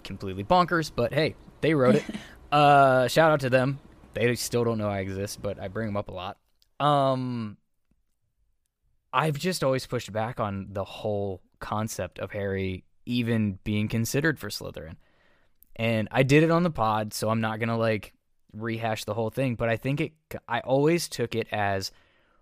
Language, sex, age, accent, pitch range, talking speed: English, male, 10-29, American, 105-135 Hz, 180 wpm